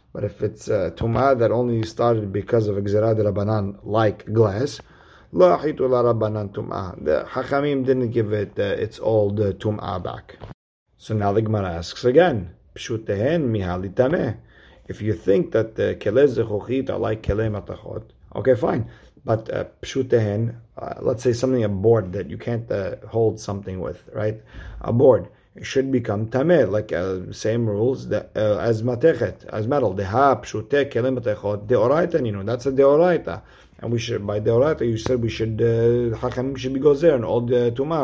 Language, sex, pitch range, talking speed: English, male, 105-125 Hz, 160 wpm